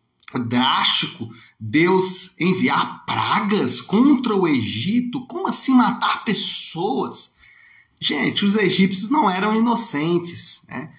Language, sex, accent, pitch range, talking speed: Portuguese, male, Brazilian, 175-240 Hz, 100 wpm